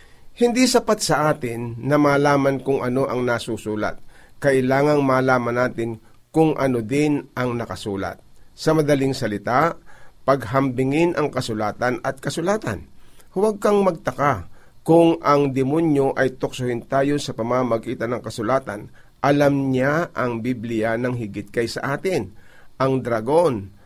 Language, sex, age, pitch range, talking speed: Filipino, male, 50-69, 125-150 Hz, 125 wpm